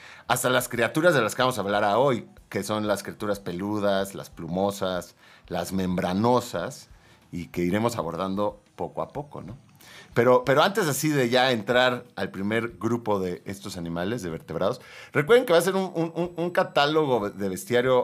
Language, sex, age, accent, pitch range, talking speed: Spanish, male, 40-59, Mexican, 95-120 Hz, 175 wpm